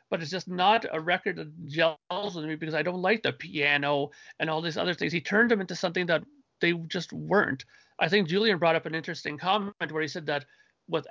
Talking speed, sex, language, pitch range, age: 230 wpm, male, English, 155-195 Hz, 40-59